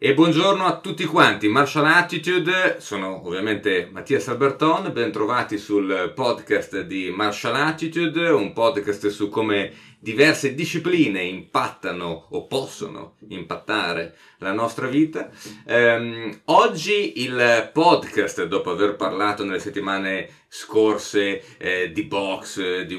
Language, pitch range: Italian, 95-150 Hz